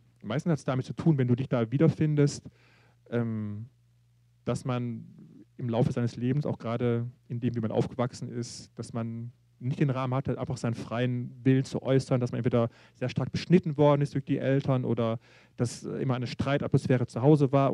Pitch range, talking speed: 120-140 Hz, 190 wpm